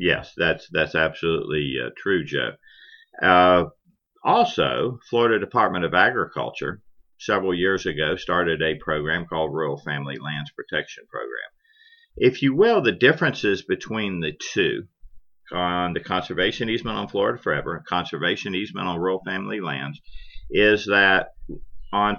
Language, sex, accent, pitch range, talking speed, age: English, male, American, 85-110 Hz, 135 wpm, 50-69